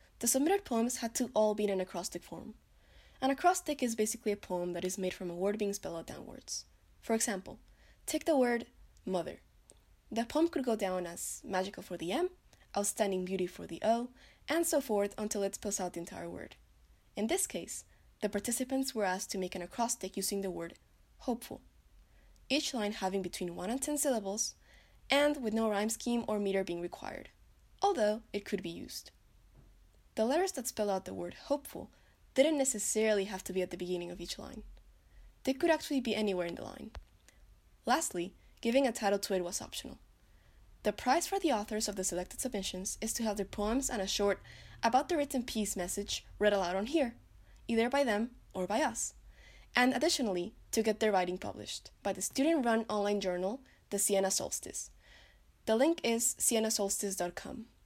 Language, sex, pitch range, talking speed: English, female, 190-250 Hz, 190 wpm